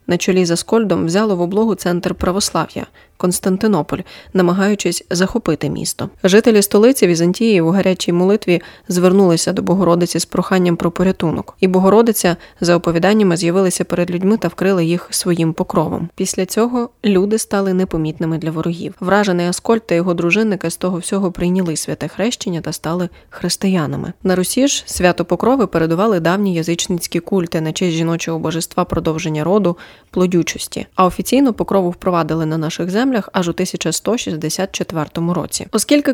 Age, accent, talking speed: 20-39, native, 145 wpm